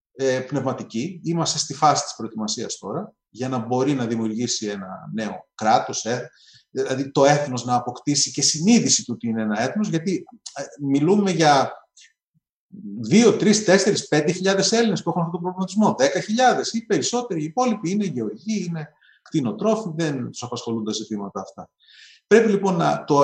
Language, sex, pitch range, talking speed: Greek, male, 135-210 Hz, 150 wpm